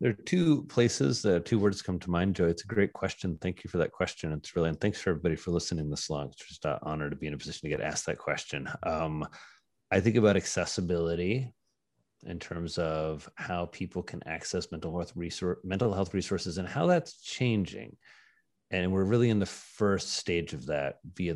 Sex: male